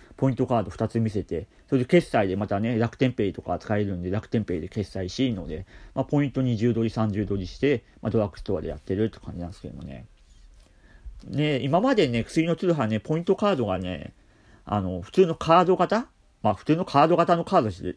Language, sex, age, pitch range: Japanese, male, 40-59, 95-145 Hz